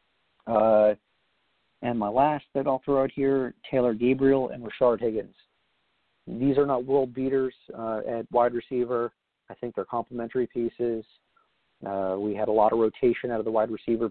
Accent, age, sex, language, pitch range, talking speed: American, 40-59, male, English, 100-125 Hz, 170 wpm